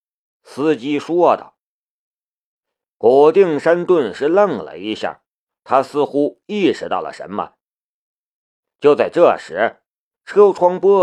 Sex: male